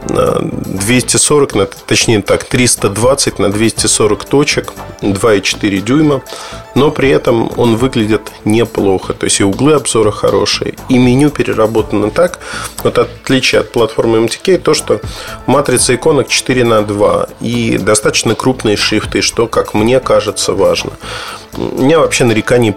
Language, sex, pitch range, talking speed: Russian, male, 105-130 Hz, 130 wpm